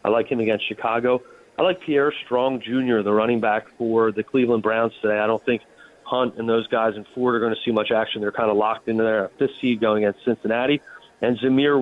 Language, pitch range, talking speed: English, 110-130 Hz, 235 wpm